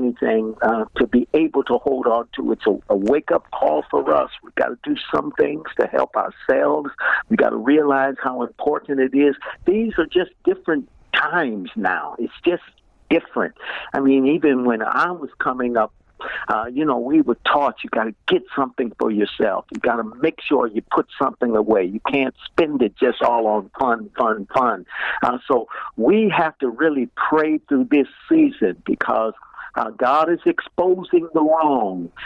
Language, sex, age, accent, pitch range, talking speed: English, male, 50-69, American, 125-170 Hz, 185 wpm